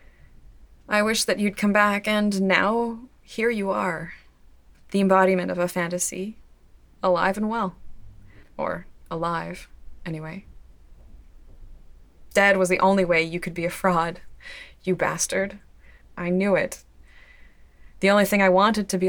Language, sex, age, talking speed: English, female, 20-39, 140 wpm